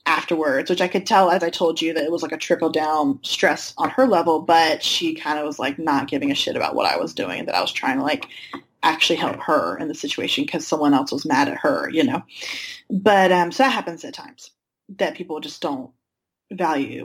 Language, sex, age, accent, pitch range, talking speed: English, female, 20-39, American, 165-195 Hz, 240 wpm